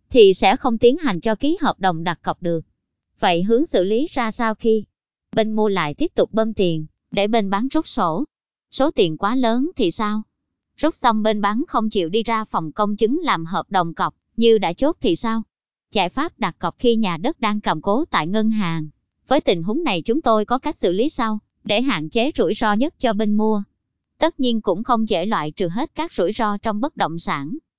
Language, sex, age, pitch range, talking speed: Vietnamese, male, 20-39, 190-250 Hz, 225 wpm